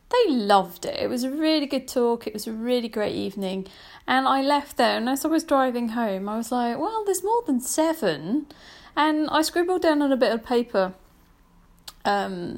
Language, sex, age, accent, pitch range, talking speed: English, female, 30-49, British, 190-265 Hz, 205 wpm